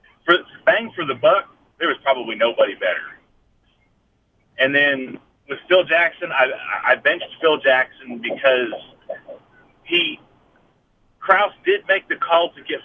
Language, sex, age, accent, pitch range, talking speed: English, male, 30-49, American, 130-195 Hz, 135 wpm